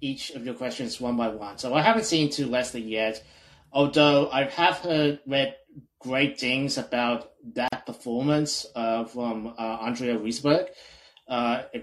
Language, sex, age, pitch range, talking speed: English, male, 30-49, 120-160 Hz, 160 wpm